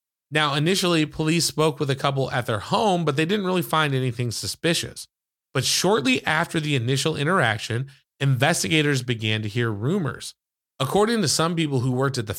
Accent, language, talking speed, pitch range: American, English, 175 wpm, 115-150 Hz